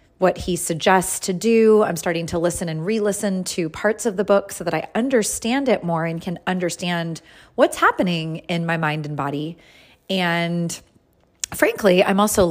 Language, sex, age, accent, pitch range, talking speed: English, female, 30-49, American, 165-210 Hz, 175 wpm